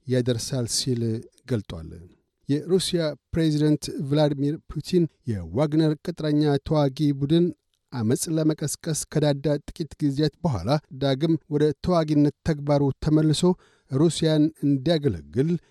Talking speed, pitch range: 95 wpm, 135-155 Hz